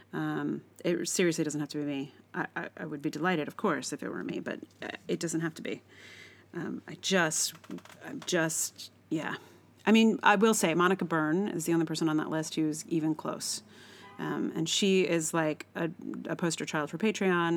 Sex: female